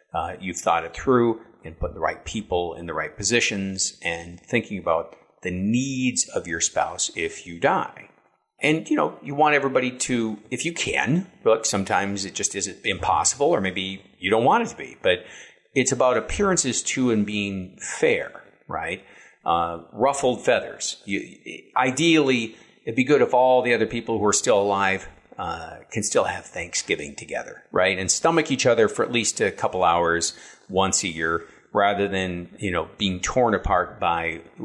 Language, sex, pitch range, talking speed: English, male, 95-130 Hz, 180 wpm